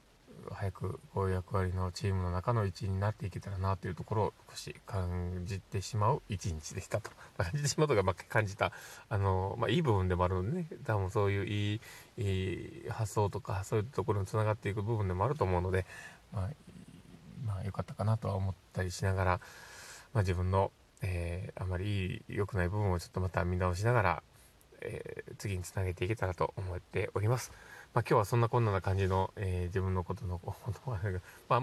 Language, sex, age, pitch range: Japanese, male, 20-39, 95-115 Hz